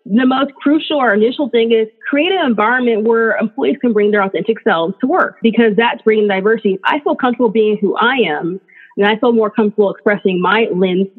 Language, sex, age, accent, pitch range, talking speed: English, female, 20-39, American, 195-240 Hz, 205 wpm